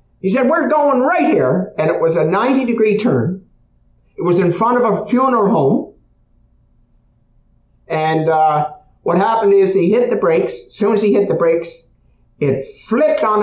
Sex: male